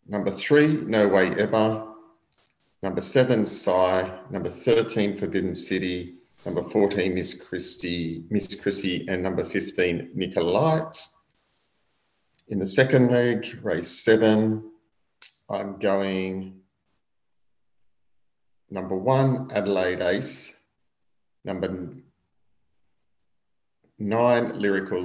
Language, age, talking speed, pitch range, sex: English, 40-59, 90 wpm, 95-115 Hz, male